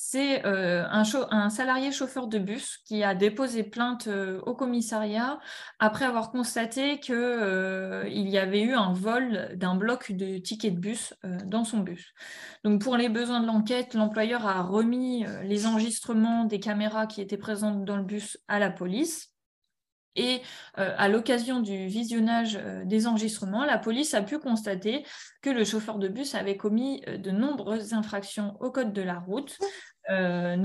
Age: 20-39